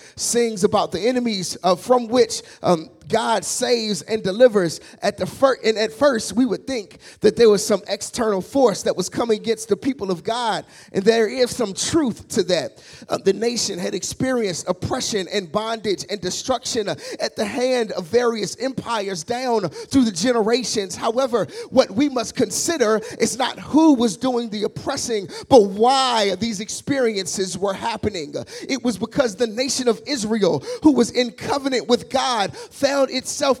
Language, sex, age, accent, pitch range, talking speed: English, male, 30-49, American, 210-260 Hz, 170 wpm